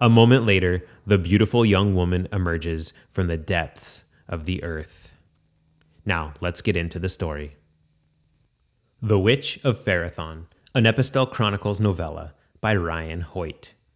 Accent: American